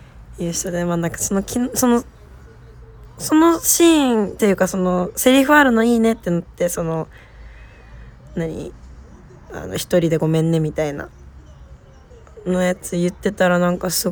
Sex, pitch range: female, 155-195 Hz